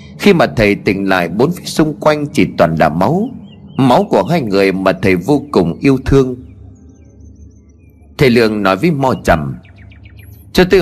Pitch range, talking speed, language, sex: 95-150 Hz, 170 wpm, Vietnamese, male